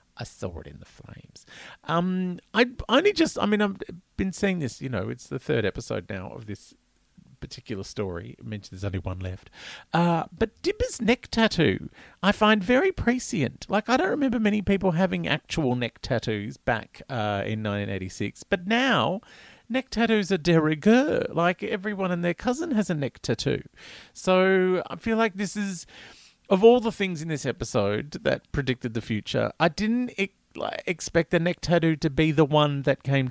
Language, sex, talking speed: English, male, 180 wpm